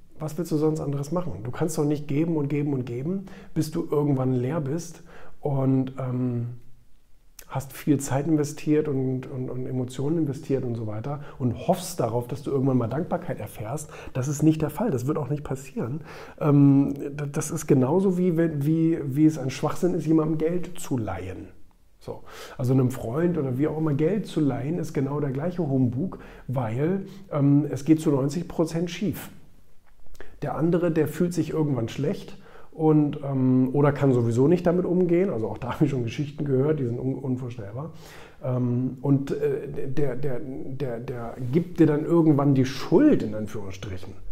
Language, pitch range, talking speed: German, 125-160 Hz, 175 wpm